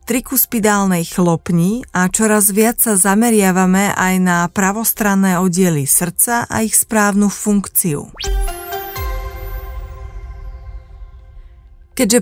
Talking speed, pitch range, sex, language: 85 wpm, 170-215 Hz, female, Slovak